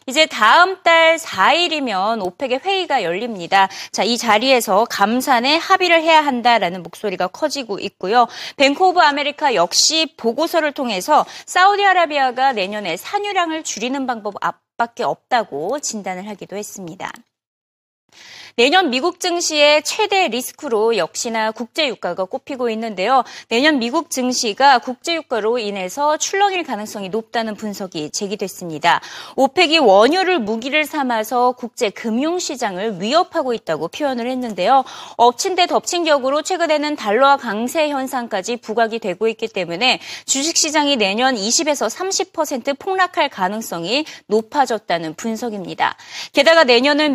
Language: Korean